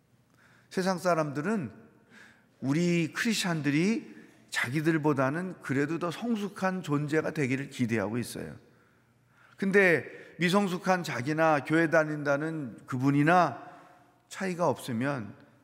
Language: Korean